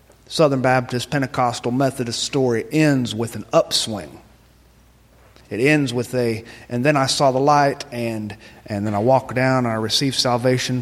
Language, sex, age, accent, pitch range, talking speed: English, male, 30-49, American, 100-125 Hz, 160 wpm